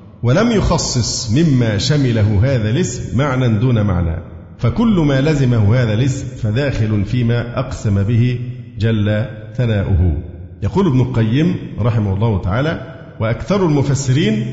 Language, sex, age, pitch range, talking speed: Arabic, male, 50-69, 105-130 Hz, 115 wpm